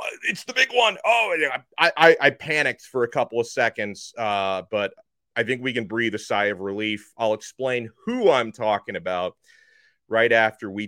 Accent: American